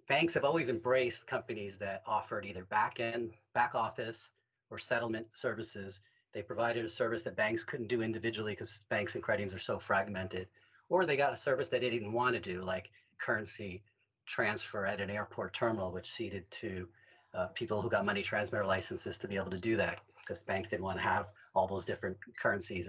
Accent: American